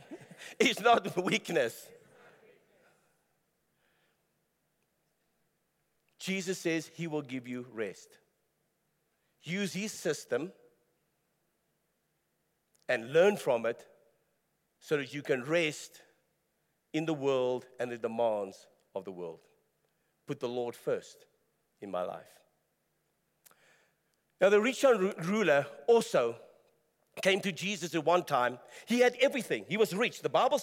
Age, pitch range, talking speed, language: 50-69, 185-275 Hz, 115 wpm, English